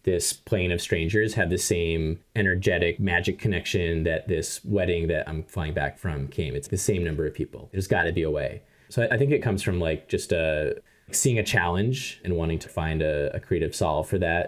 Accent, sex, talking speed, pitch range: American, male, 215 wpm, 85-100 Hz